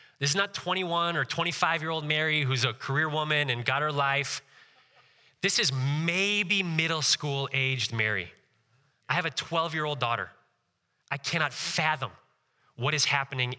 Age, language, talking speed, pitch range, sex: 30-49, English, 140 wpm, 120-155 Hz, male